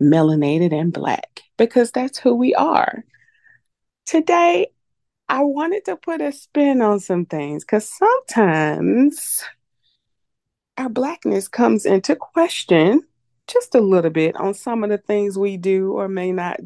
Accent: American